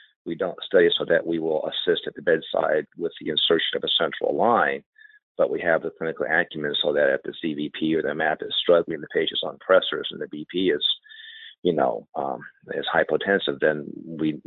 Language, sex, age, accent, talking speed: English, male, 40-59, American, 205 wpm